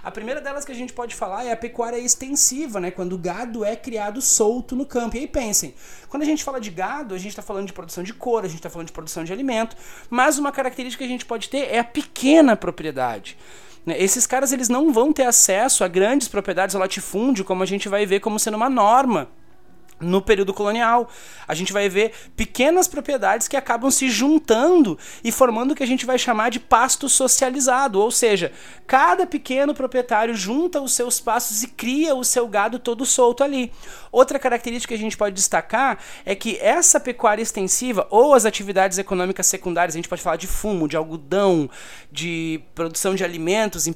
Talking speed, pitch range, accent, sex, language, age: 205 wpm, 200-265 Hz, Brazilian, male, Portuguese, 30-49